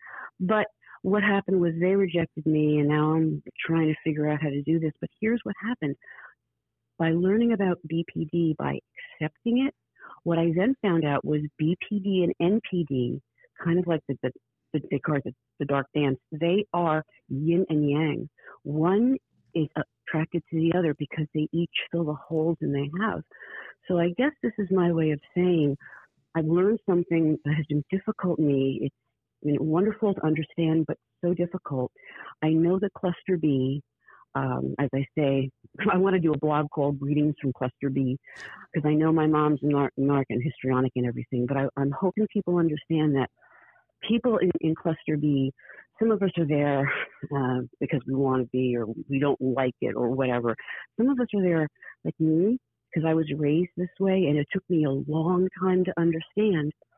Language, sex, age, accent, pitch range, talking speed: English, female, 50-69, American, 145-180 Hz, 185 wpm